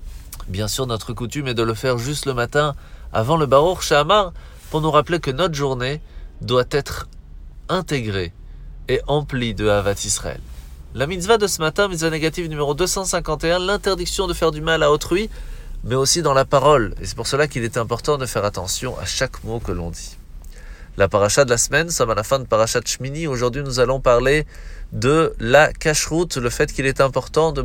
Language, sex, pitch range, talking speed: French, male, 115-155 Hz, 195 wpm